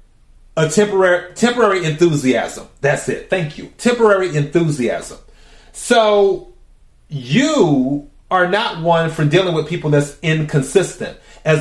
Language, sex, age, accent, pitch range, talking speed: English, male, 30-49, American, 150-190 Hz, 115 wpm